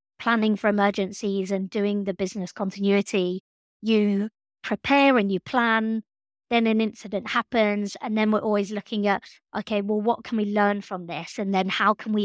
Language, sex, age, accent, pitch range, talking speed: English, female, 30-49, British, 195-225 Hz, 175 wpm